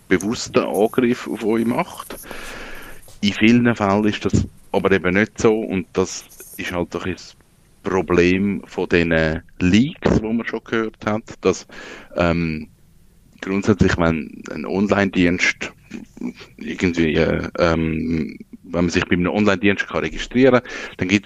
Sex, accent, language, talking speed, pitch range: male, Austrian, German, 135 wpm, 85-110 Hz